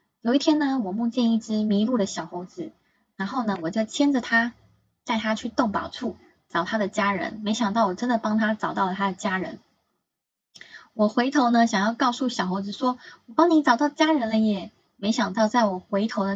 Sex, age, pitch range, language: female, 20-39, 185-230 Hz, Chinese